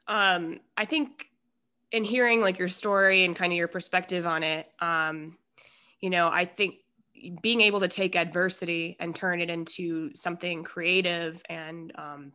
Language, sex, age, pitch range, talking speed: English, female, 20-39, 170-200 Hz, 160 wpm